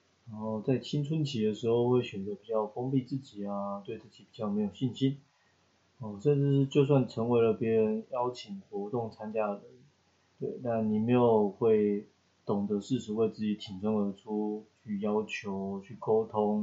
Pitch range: 105-135 Hz